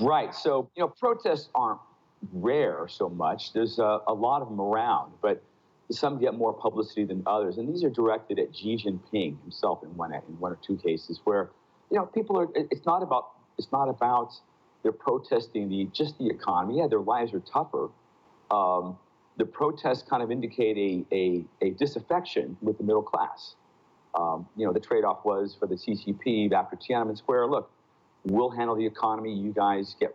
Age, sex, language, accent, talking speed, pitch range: 50-69, male, English, American, 185 wpm, 100-120 Hz